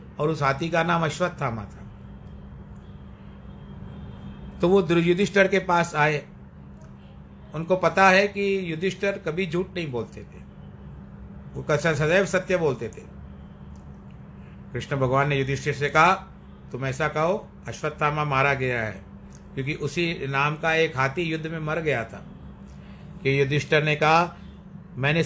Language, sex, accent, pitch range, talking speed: Hindi, male, native, 125-175 Hz, 140 wpm